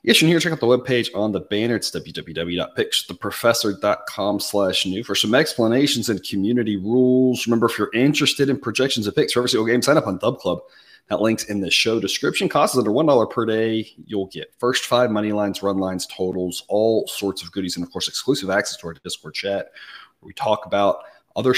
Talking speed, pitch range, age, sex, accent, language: 210 wpm, 95-125 Hz, 30-49, male, American, English